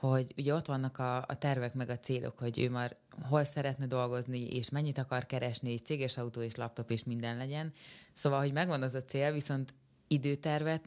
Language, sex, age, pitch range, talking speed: Hungarian, female, 20-39, 125-145 Hz, 200 wpm